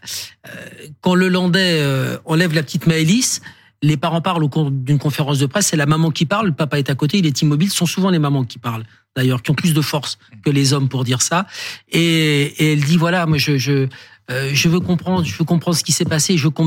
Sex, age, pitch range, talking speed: male, 50-69, 135-170 Hz, 240 wpm